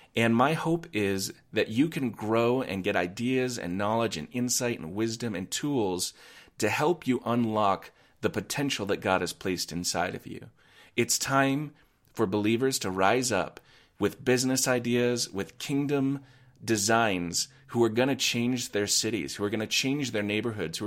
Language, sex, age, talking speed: English, male, 30-49, 175 wpm